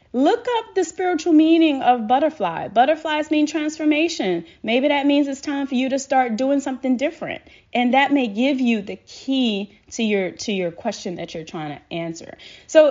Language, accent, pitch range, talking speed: English, American, 170-260 Hz, 185 wpm